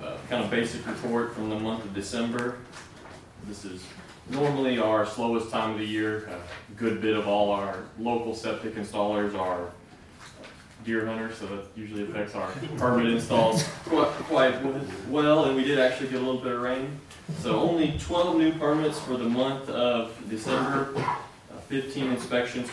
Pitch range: 100-120 Hz